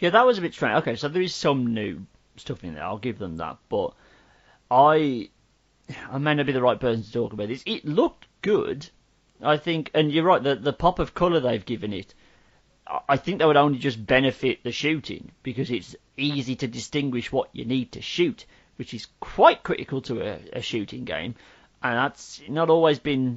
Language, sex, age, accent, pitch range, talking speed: English, male, 40-59, British, 120-145 Hz, 210 wpm